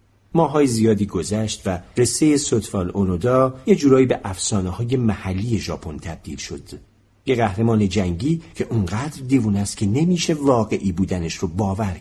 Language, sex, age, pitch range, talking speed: Persian, male, 50-69, 95-130 Hz, 145 wpm